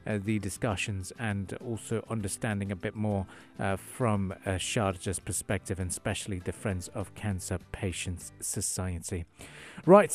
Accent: British